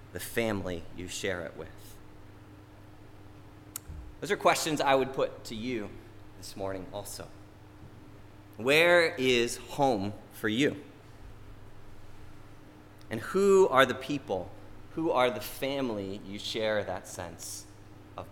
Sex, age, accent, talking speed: male, 30-49, American, 120 wpm